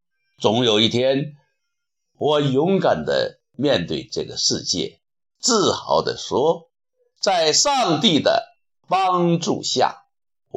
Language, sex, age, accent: Chinese, male, 60-79, native